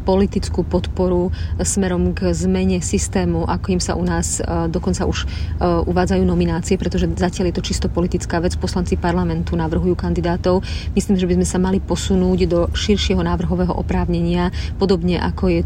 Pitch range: 85-95 Hz